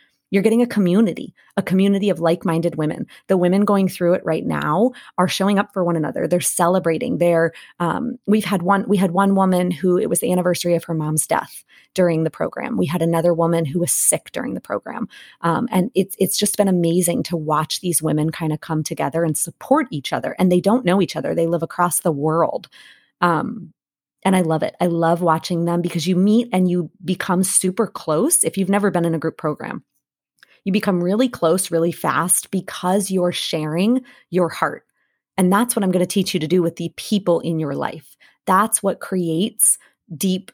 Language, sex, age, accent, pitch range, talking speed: English, female, 30-49, American, 165-195 Hz, 210 wpm